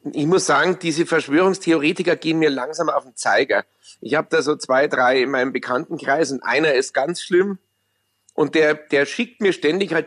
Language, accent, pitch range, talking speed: German, German, 130-165 Hz, 190 wpm